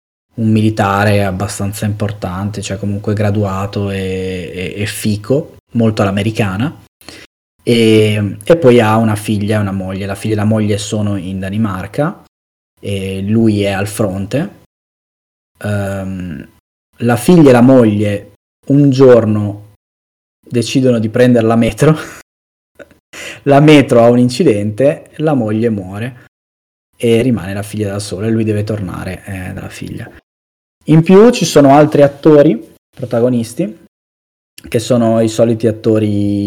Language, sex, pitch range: Italian, male, 100-120 Hz